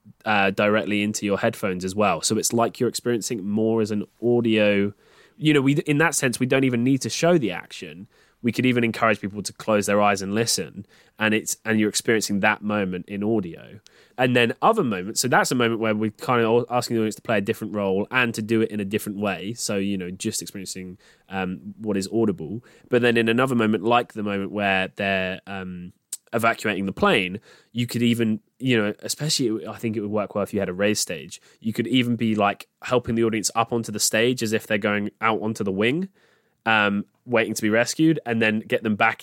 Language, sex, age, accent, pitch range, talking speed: English, male, 20-39, British, 100-120 Hz, 230 wpm